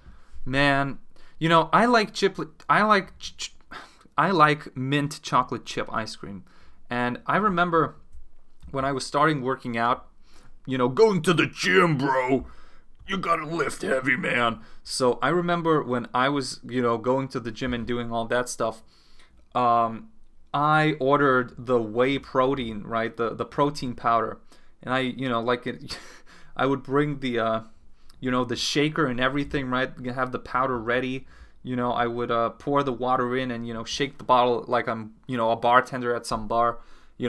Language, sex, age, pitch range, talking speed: English, male, 20-39, 115-140 Hz, 180 wpm